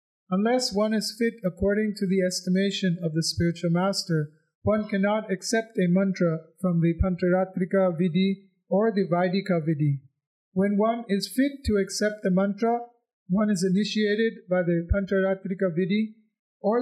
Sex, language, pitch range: male, English, 175-210 Hz